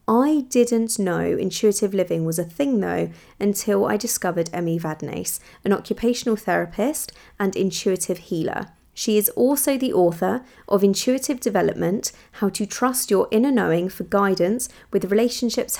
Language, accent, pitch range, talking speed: English, British, 175-230 Hz, 145 wpm